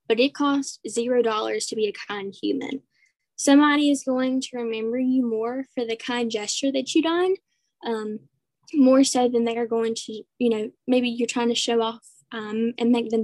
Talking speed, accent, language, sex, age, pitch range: 195 wpm, American, English, female, 10-29, 225-270 Hz